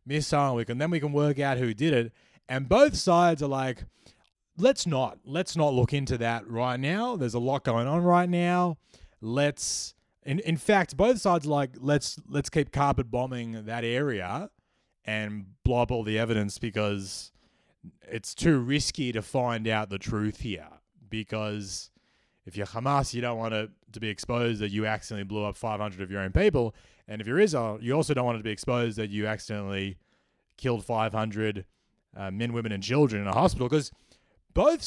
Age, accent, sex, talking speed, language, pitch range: 20-39, Australian, male, 190 wpm, English, 110-150 Hz